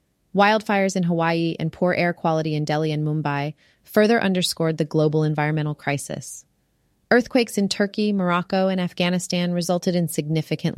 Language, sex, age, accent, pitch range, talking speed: English, female, 30-49, American, 150-185 Hz, 145 wpm